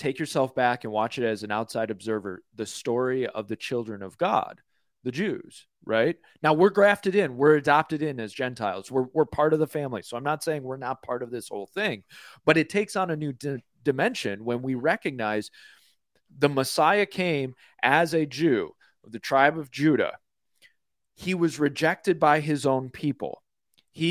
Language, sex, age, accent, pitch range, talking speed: English, male, 30-49, American, 130-165 Hz, 185 wpm